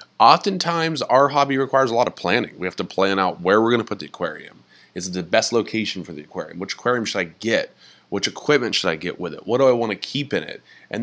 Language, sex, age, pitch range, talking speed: English, male, 20-39, 90-130 Hz, 260 wpm